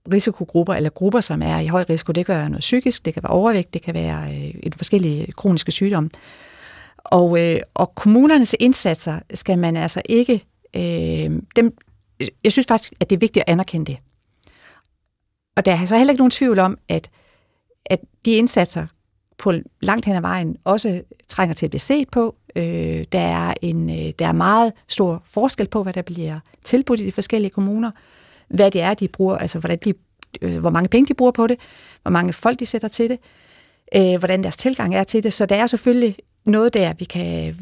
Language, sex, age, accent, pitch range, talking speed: Danish, female, 40-59, native, 160-225 Hz, 195 wpm